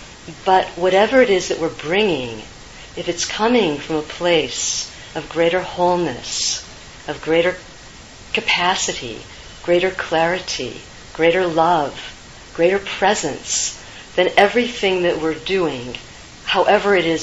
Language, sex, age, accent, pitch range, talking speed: English, female, 50-69, American, 150-180 Hz, 115 wpm